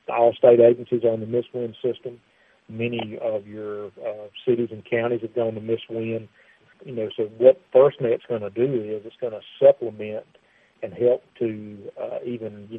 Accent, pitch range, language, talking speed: American, 110-125 Hz, English, 185 wpm